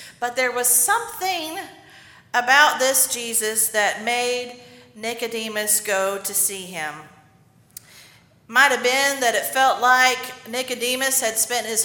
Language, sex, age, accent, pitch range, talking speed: English, female, 40-59, American, 210-265 Hz, 125 wpm